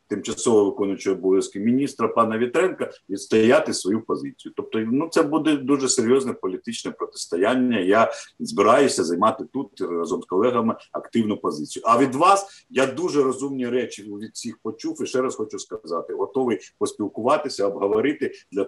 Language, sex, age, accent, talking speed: Ukrainian, male, 50-69, native, 145 wpm